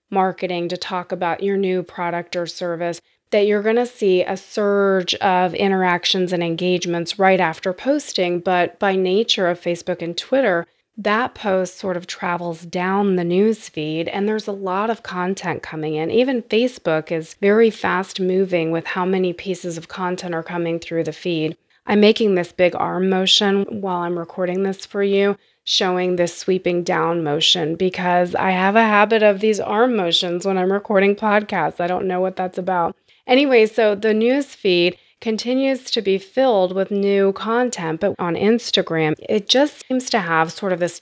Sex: female